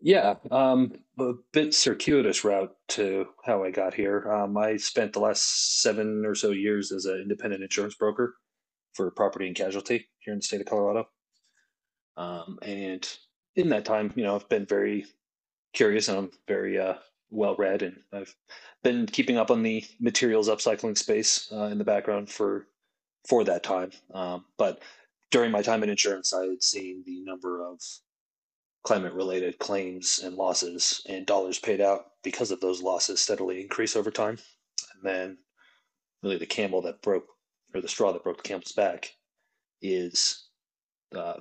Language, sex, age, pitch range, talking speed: English, male, 30-49, 95-110 Hz, 170 wpm